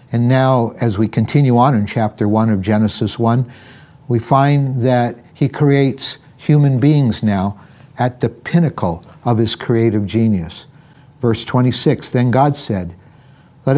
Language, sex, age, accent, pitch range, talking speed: English, male, 60-79, American, 115-140 Hz, 145 wpm